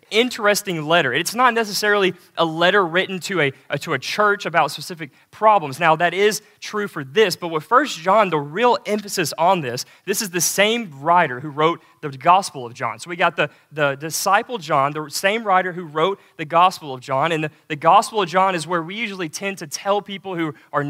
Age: 30-49